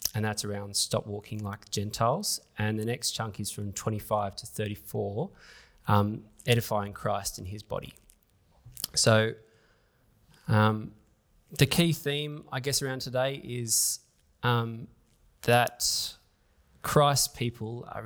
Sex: male